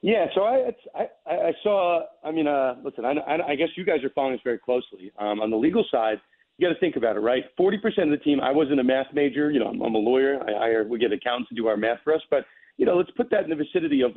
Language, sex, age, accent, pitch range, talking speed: English, male, 40-59, American, 125-160 Hz, 290 wpm